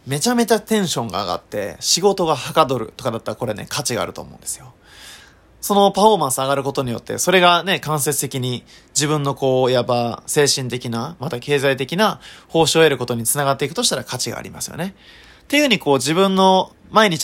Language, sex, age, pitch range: Japanese, male, 20-39, 125-190 Hz